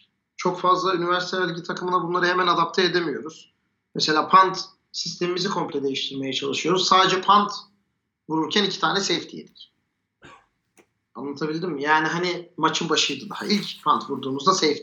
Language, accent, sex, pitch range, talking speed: Turkish, native, male, 155-195 Hz, 130 wpm